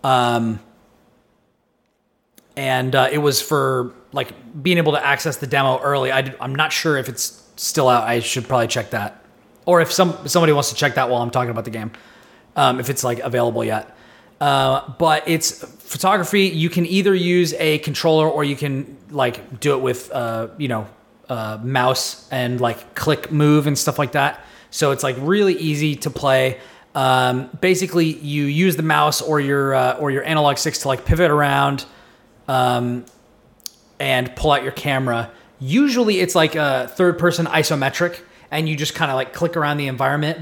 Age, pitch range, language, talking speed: 30-49, 125-155 Hz, English, 185 wpm